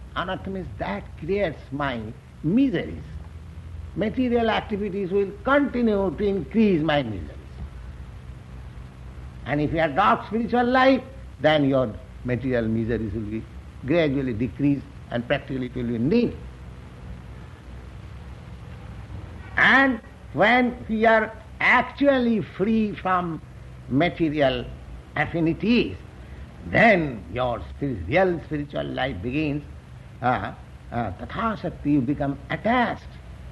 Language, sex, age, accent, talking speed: English, male, 60-79, Indian, 100 wpm